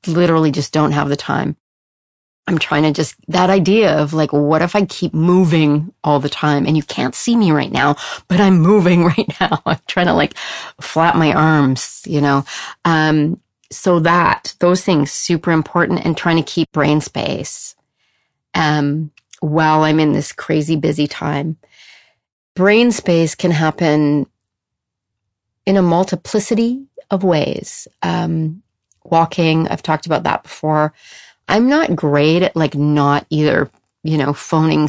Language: English